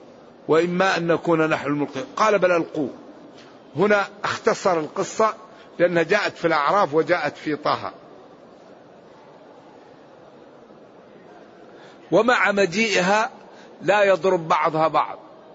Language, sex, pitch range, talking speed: English, male, 160-190 Hz, 95 wpm